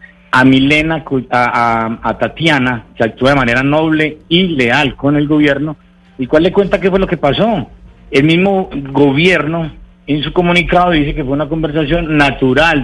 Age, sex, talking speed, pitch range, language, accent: 50-69, male, 170 wpm, 115-160 Hz, Spanish, Colombian